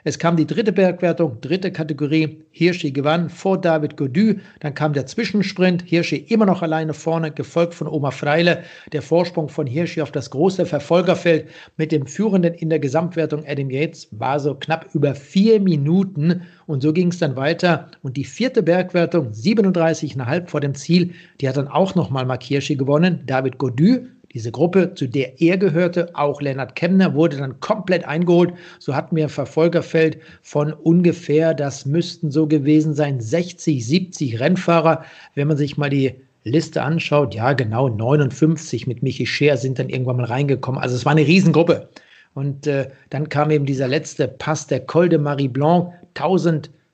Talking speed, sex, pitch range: 175 wpm, male, 140-170 Hz